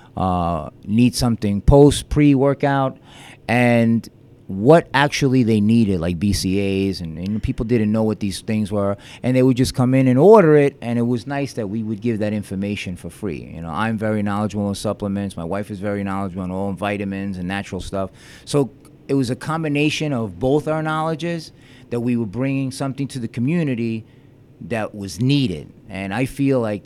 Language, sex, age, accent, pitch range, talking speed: English, male, 30-49, American, 105-130 Hz, 190 wpm